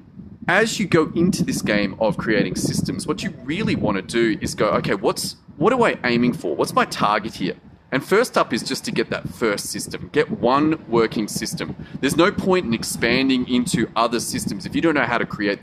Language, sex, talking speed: English, male, 220 wpm